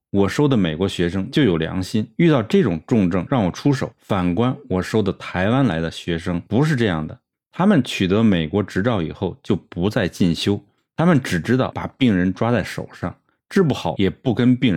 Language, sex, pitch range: Chinese, male, 90-130 Hz